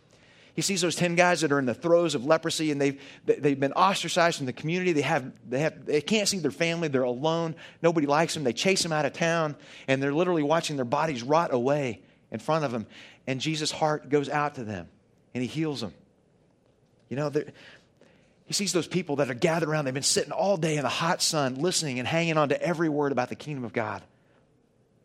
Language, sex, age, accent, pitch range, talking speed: English, male, 30-49, American, 120-155 Hz, 225 wpm